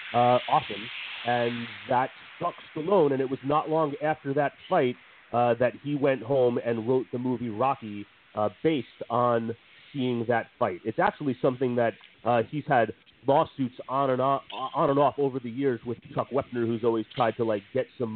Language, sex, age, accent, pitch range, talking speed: English, male, 30-49, American, 120-150 Hz, 190 wpm